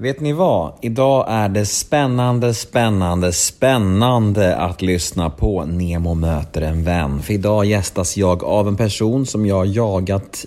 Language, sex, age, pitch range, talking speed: Swedish, male, 30-49, 90-120 Hz, 150 wpm